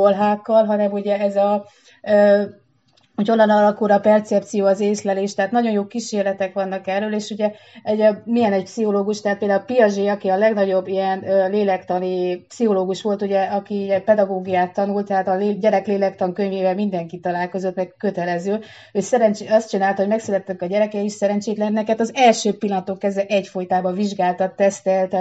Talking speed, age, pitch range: 165 wpm, 30-49, 185-210 Hz